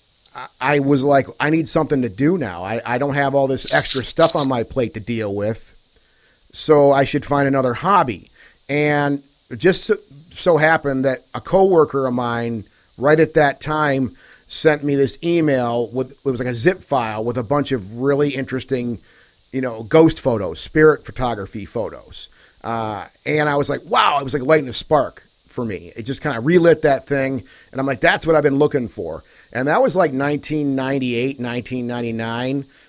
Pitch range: 120-145 Hz